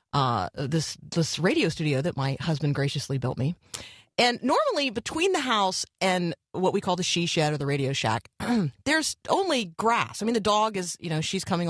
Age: 30-49